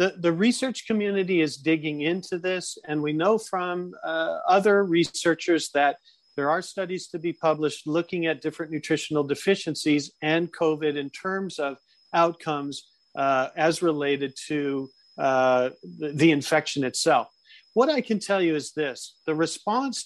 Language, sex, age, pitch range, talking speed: English, male, 40-59, 150-185 Hz, 155 wpm